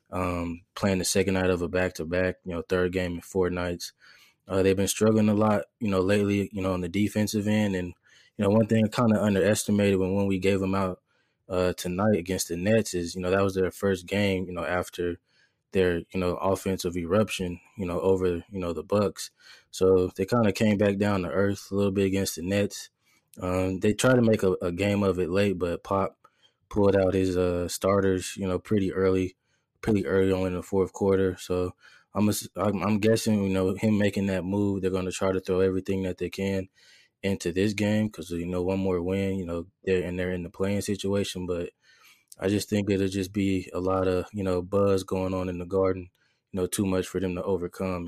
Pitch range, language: 90-100 Hz, English